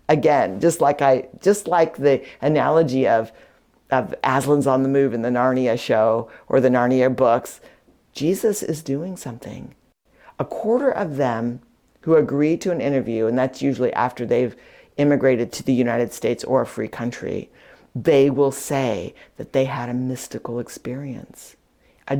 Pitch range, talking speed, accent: 130-170 Hz, 160 wpm, American